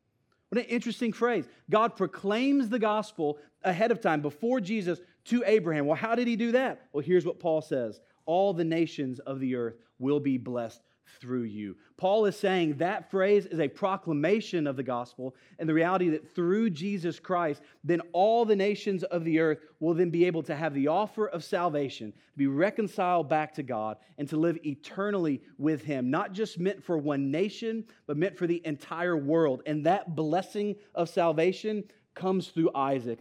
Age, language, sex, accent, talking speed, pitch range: 30-49, English, male, American, 190 wpm, 145-195 Hz